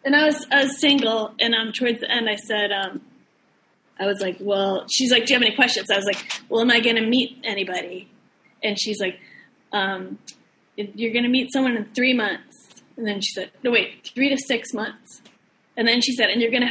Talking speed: 240 wpm